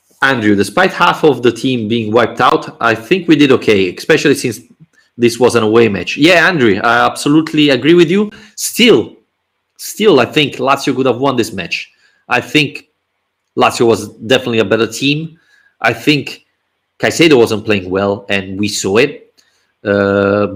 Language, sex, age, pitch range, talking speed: English, male, 30-49, 105-140 Hz, 165 wpm